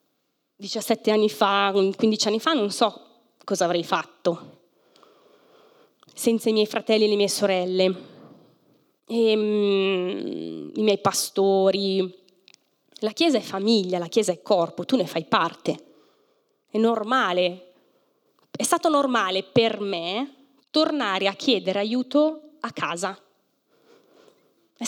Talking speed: 120 wpm